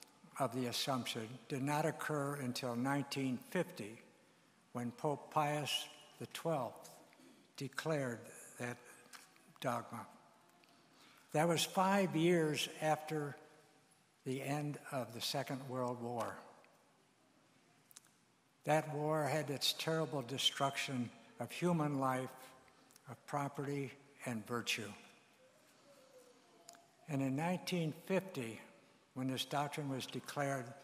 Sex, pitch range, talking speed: male, 130-155 Hz, 95 wpm